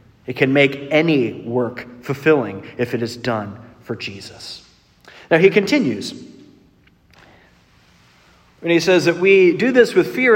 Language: English